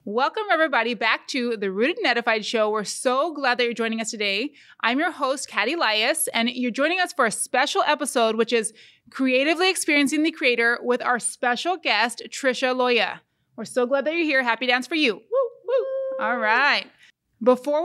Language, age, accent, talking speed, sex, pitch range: English, 20-39, American, 180 wpm, female, 235-305 Hz